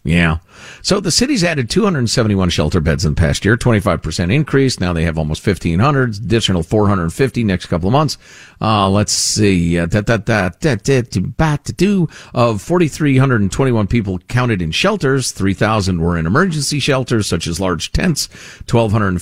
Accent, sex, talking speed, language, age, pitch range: American, male, 205 wpm, English, 50-69, 95-145 Hz